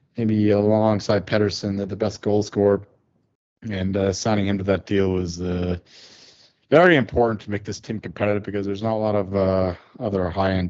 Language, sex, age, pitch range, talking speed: English, male, 30-49, 95-110 Hz, 185 wpm